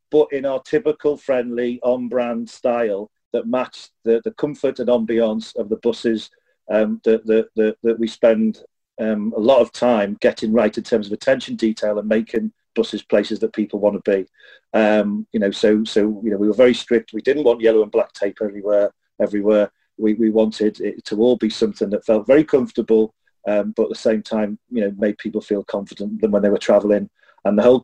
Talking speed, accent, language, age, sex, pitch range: 210 wpm, British, English, 40-59, male, 105-115 Hz